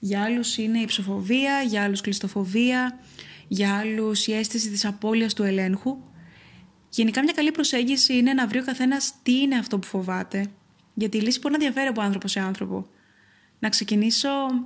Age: 20-39